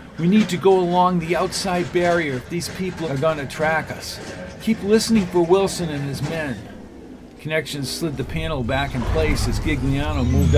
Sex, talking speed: male, 185 wpm